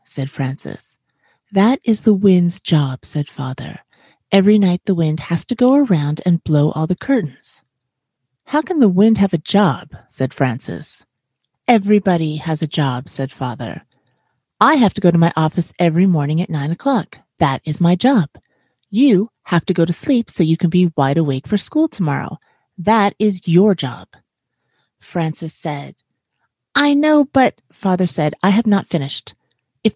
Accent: American